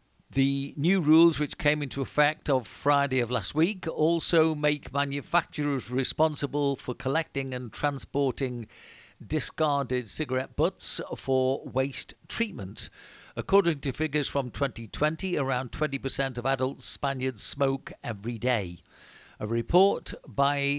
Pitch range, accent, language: 130-155 Hz, British, English